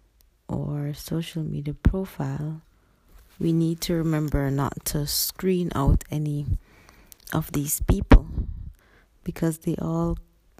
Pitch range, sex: 140-175 Hz, female